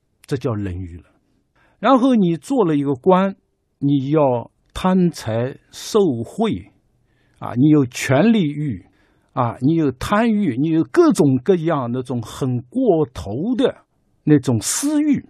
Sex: male